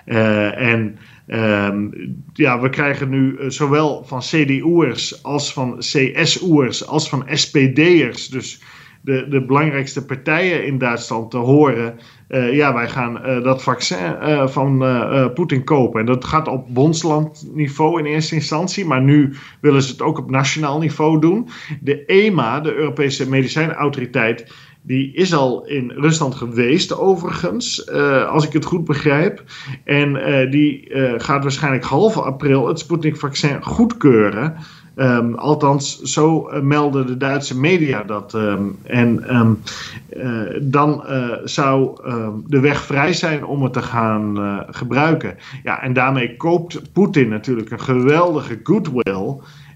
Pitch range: 125-150 Hz